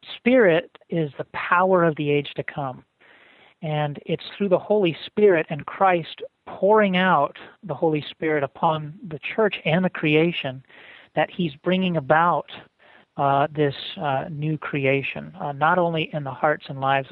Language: English